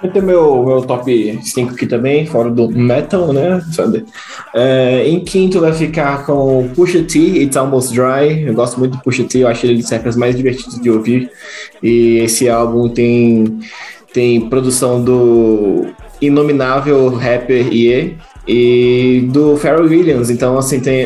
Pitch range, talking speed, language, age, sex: 125-150 Hz, 155 wpm, Portuguese, 20-39, male